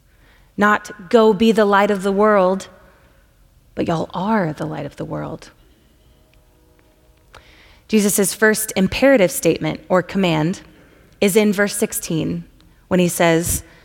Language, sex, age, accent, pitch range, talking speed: English, female, 20-39, American, 165-210 Hz, 125 wpm